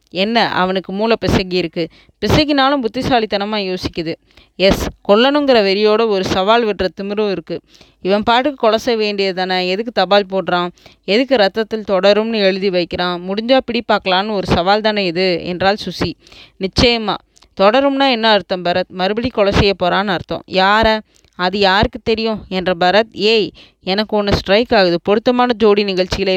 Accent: native